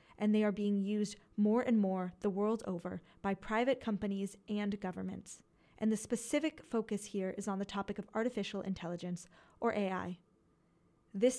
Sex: female